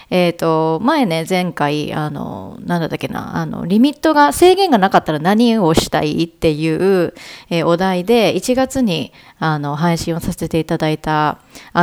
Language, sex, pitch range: Japanese, female, 165-250 Hz